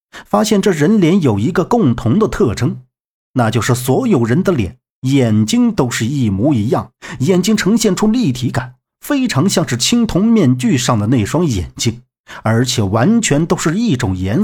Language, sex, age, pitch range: Chinese, male, 50-69, 115-175 Hz